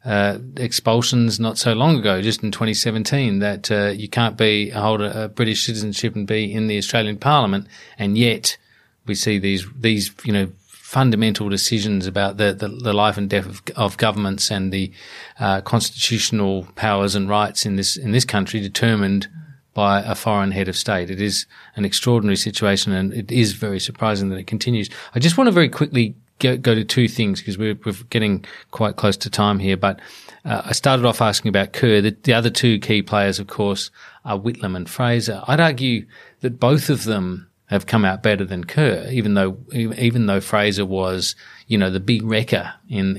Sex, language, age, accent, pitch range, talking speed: male, English, 40-59, Australian, 100-115 Hz, 200 wpm